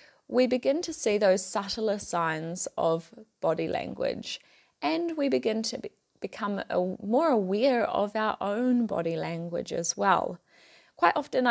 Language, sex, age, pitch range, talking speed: English, female, 20-39, 190-245 Hz, 135 wpm